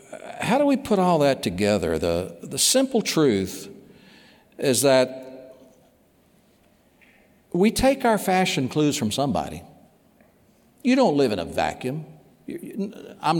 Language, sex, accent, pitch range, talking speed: English, male, American, 115-180 Hz, 120 wpm